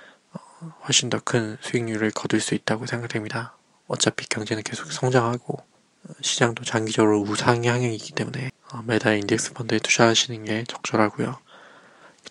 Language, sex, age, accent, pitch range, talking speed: English, male, 20-39, Korean, 110-120 Hz, 105 wpm